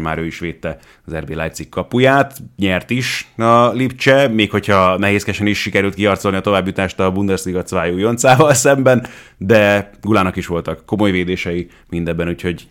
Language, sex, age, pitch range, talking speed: Hungarian, male, 30-49, 85-105 Hz, 150 wpm